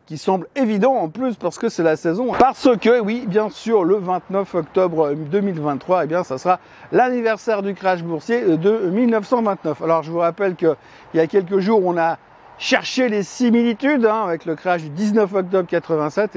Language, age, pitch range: French, 50-69, 165-220 Hz